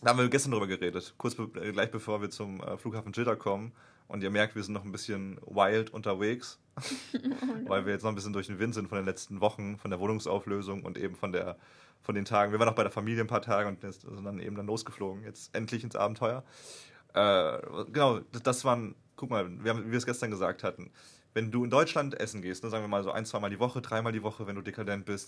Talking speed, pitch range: 250 wpm, 100-120 Hz